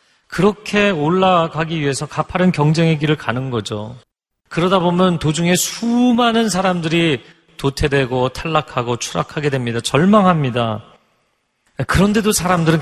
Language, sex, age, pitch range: Korean, male, 40-59, 110-160 Hz